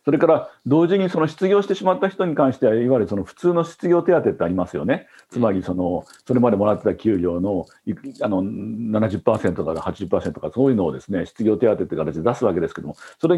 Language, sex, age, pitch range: Japanese, male, 50-69, 110-165 Hz